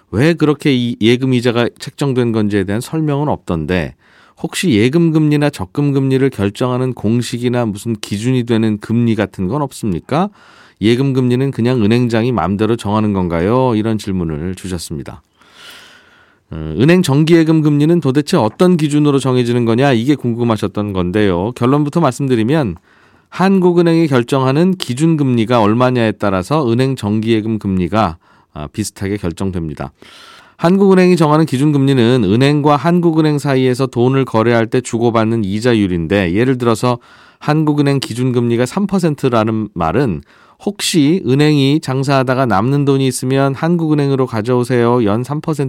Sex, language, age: male, Korean, 40-59